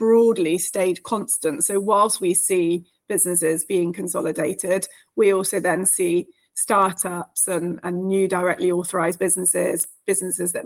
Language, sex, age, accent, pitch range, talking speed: English, female, 30-49, British, 185-210 Hz, 130 wpm